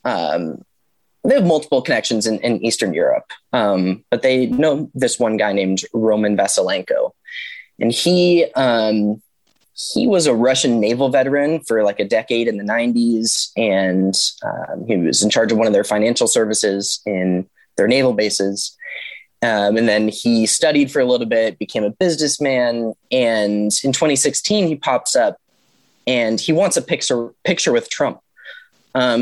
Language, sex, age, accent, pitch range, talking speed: English, male, 20-39, American, 105-140 Hz, 160 wpm